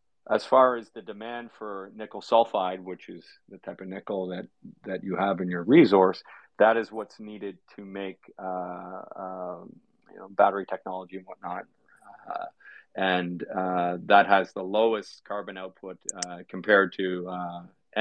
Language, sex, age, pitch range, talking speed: English, male, 40-59, 95-105 Hz, 160 wpm